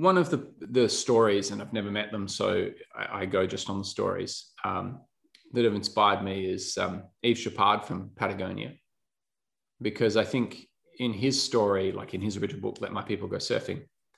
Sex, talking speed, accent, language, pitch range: male, 190 wpm, Australian, English, 100-125 Hz